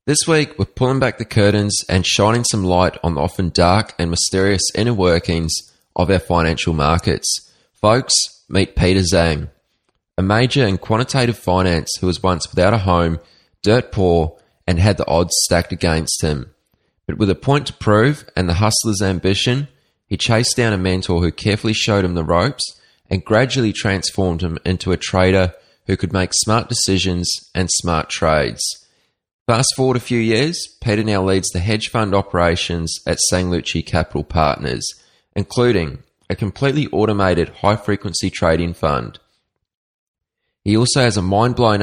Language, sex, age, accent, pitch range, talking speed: English, male, 20-39, Australian, 90-110 Hz, 160 wpm